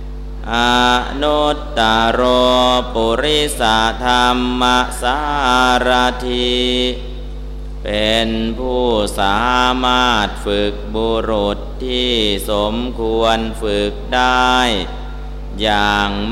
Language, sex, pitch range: Thai, male, 110-125 Hz